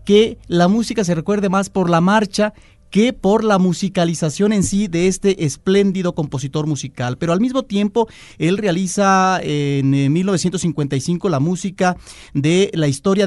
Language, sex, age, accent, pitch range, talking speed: Spanish, male, 40-59, Mexican, 155-205 Hz, 150 wpm